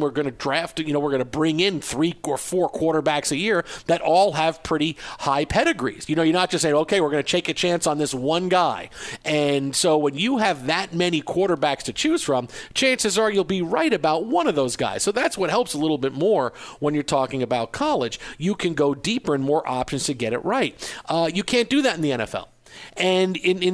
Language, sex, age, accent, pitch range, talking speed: English, male, 50-69, American, 145-185 Hz, 245 wpm